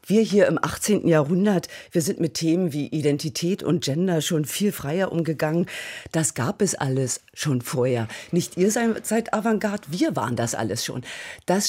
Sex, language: female, German